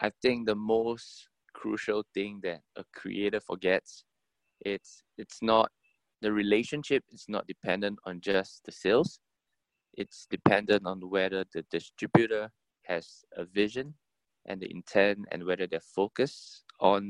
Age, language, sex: 20-39, English, male